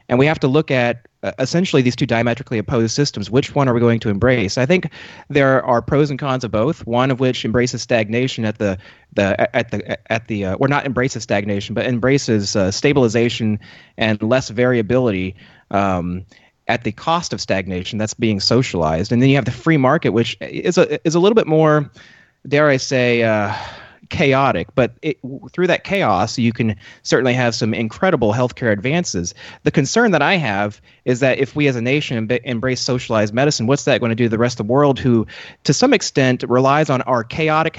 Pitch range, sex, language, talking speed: 115-145 Hz, male, English, 205 wpm